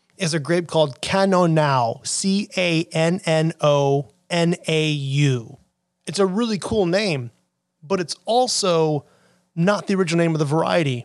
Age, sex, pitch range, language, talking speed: 30-49, male, 150-190 Hz, English, 115 wpm